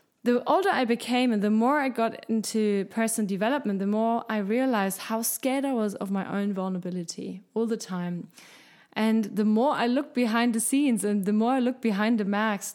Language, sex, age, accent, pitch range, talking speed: German, female, 20-39, German, 205-245 Hz, 200 wpm